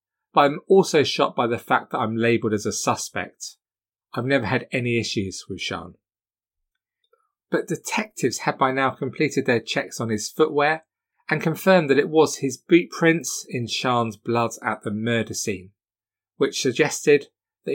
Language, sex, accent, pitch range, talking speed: English, male, British, 105-145 Hz, 165 wpm